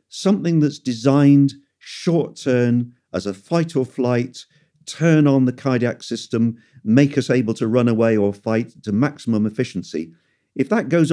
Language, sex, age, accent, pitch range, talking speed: English, male, 50-69, British, 100-135 Hz, 140 wpm